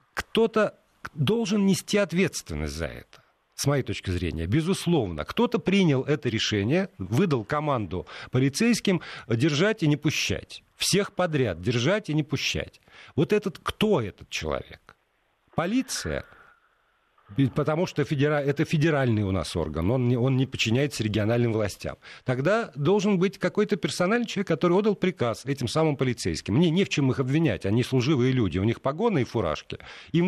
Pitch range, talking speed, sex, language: 110-175 Hz, 145 wpm, male, Russian